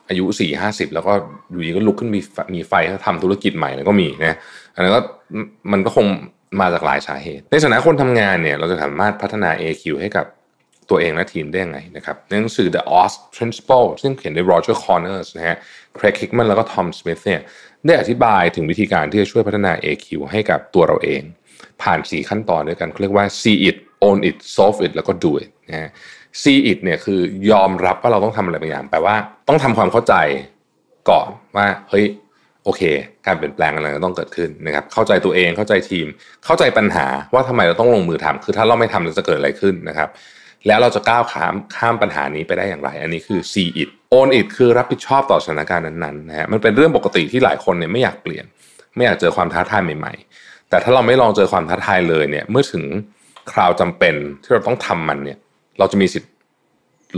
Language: Thai